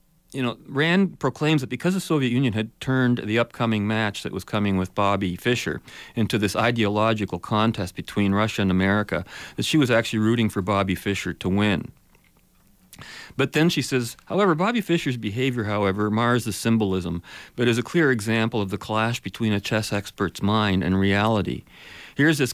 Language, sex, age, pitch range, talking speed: English, male, 40-59, 105-130 Hz, 180 wpm